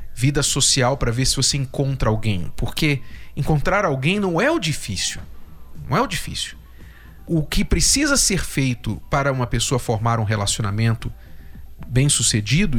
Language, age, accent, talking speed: Portuguese, 40-59, Brazilian, 145 wpm